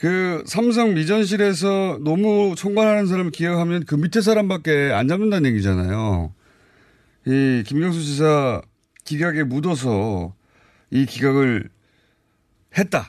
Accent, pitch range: native, 105-170 Hz